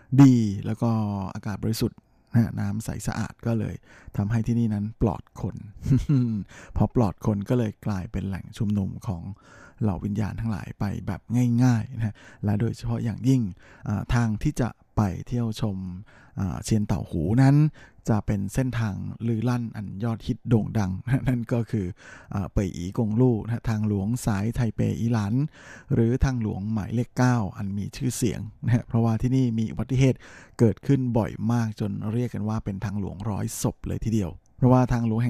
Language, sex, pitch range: Thai, male, 105-120 Hz